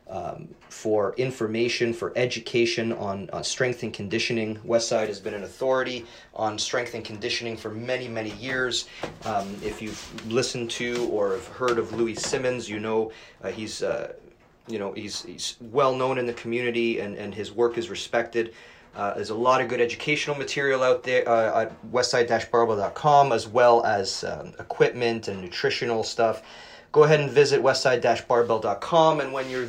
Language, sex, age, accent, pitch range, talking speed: English, male, 30-49, American, 110-130 Hz, 165 wpm